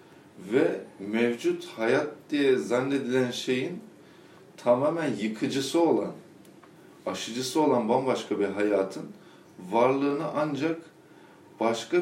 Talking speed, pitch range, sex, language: 85 wpm, 100-130 Hz, male, Turkish